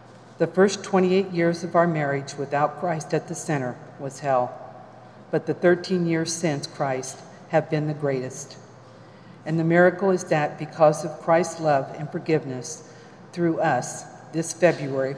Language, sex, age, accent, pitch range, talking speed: English, female, 50-69, American, 145-170 Hz, 155 wpm